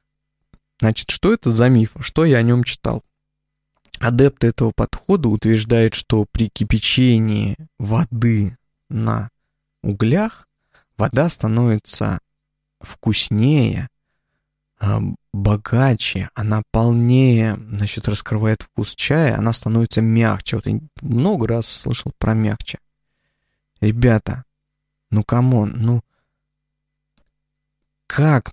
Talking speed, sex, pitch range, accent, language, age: 95 wpm, male, 110-145 Hz, native, Russian, 20-39